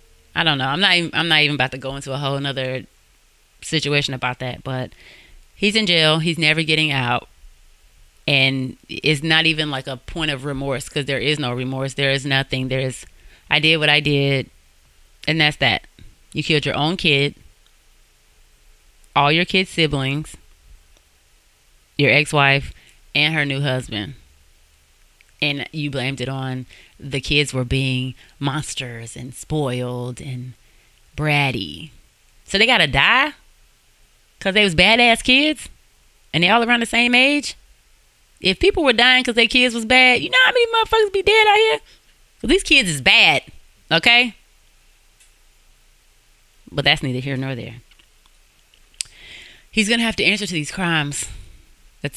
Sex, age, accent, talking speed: female, 20-39, American, 160 wpm